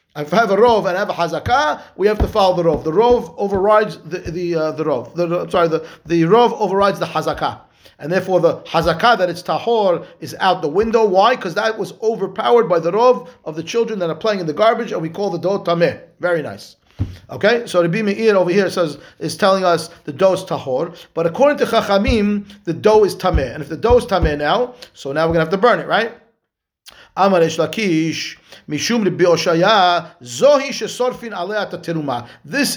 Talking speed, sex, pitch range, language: 195 wpm, male, 165-215 Hz, English